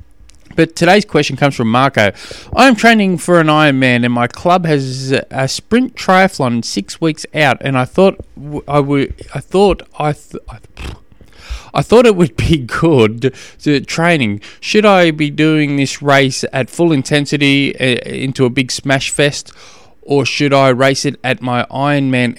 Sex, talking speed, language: male, 160 wpm, English